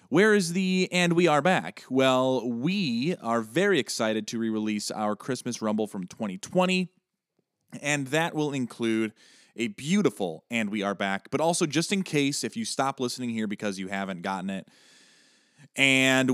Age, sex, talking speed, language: 30-49, male, 165 wpm, English